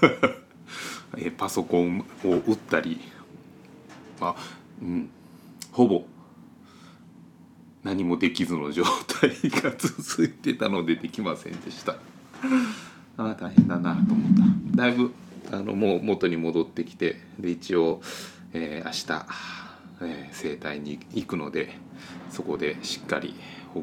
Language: Japanese